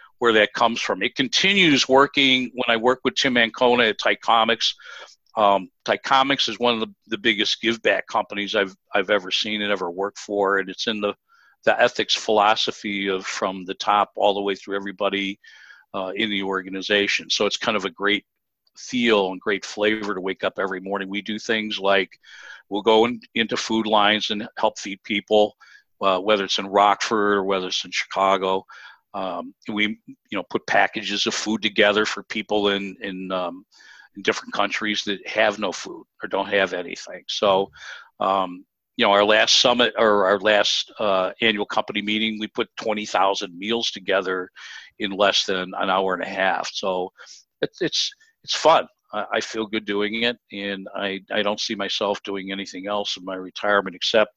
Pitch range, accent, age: 95-110 Hz, American, 50-69